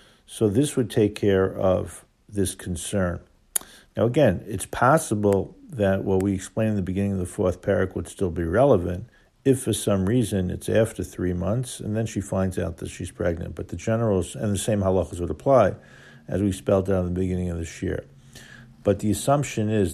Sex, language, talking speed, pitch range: male, English, 200 wpm, 95-110 Hz